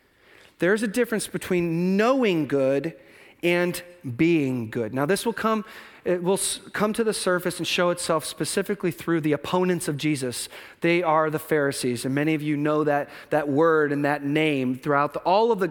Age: 40-59